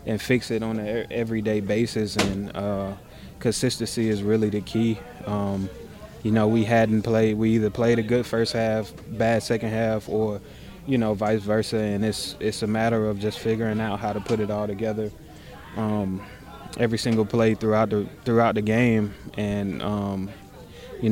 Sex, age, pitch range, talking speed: male, 20-39, 105-115 Hz, 175 wpm